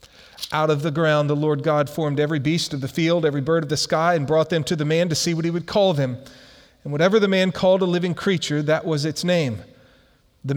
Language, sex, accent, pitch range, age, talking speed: English, male, American, 125-165 Hz, 40-59, 250 wpm